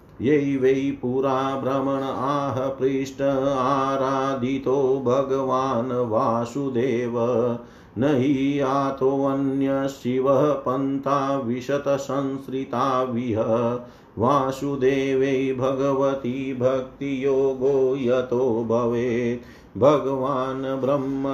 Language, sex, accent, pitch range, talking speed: Hindi, male, native, 120-135 Hz, 50 wpm